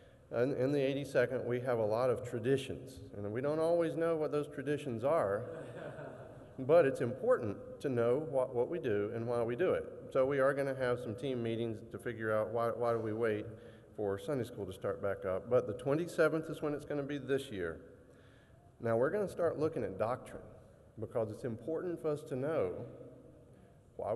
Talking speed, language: 200 wpm, English